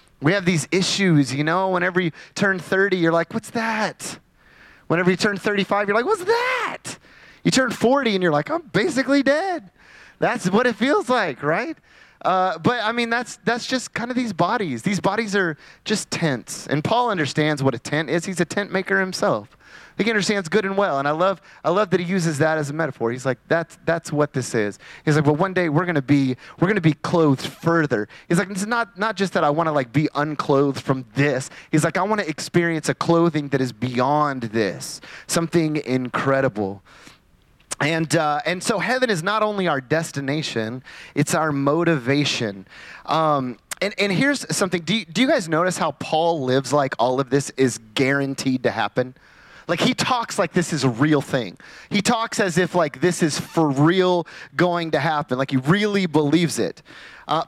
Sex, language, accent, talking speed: male, English, American, 200 wpm